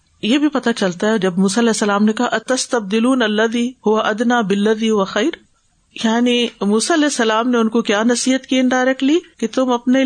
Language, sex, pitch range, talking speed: Urdu, female, 205-255 Hz, 180 wpm